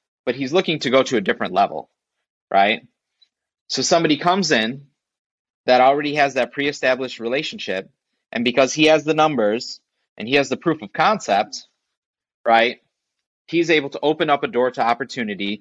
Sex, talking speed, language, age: male, 165 wpm, English, 30-49